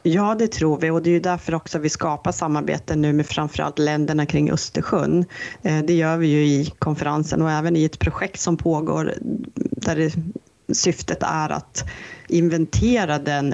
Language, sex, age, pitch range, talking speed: Swedish, female, 30-49, 150-180 Hz, 170 wpm